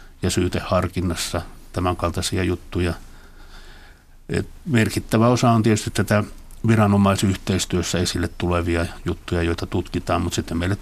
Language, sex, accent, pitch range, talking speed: Finnish, male, native, 90-100 Hz, 105 wpm